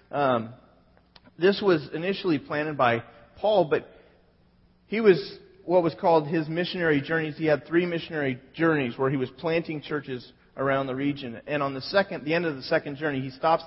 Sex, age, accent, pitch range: male, 30-49, American, 140-170 Hz